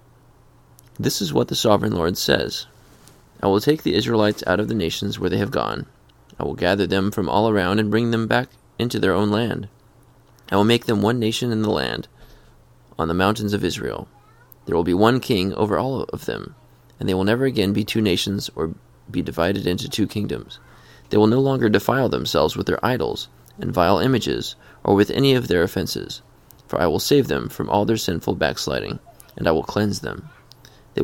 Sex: male